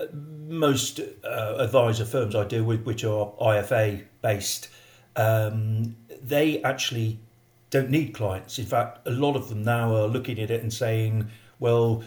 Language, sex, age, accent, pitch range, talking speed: English, male, 50-69, British, 110-130 Hz, 155 wpm